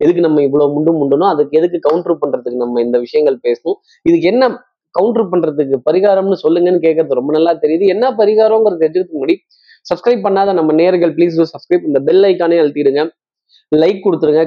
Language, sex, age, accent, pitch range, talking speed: Tamil, male, 20-39, native, 155-235 Hz, 160 wpm